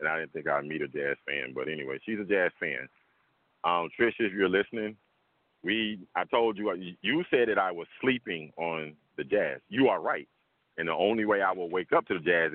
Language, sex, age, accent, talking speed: English, male, 40-59, American, 225 wpm